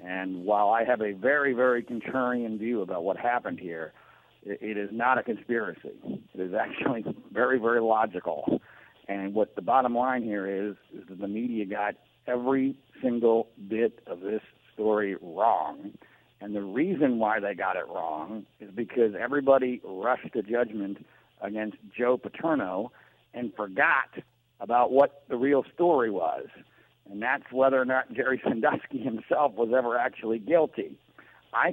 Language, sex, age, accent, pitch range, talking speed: English, male, 60-79, American, 110-130 Hz, 155 wpm